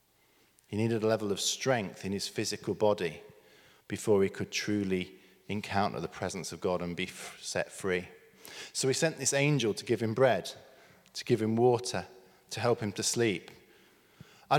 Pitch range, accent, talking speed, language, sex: 105-140 Hz, British, 175 wpm, English, male